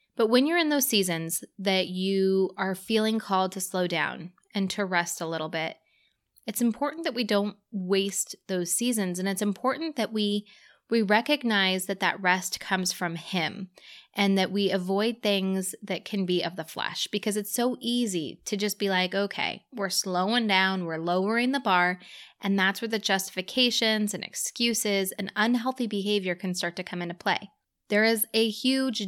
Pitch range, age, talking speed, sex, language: 185-235 Hz, 20-39, 180 wpm, female, English